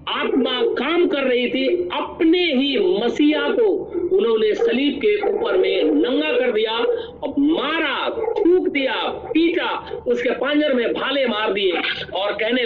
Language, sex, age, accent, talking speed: Hindi, male, 50-69, native, 140 wpm